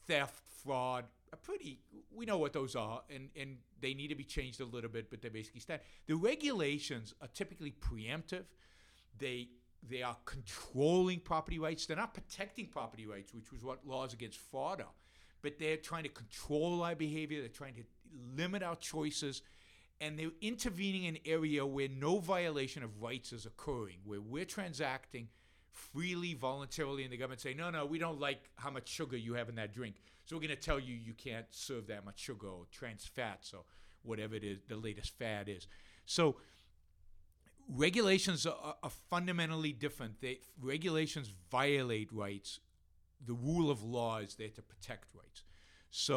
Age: 50-69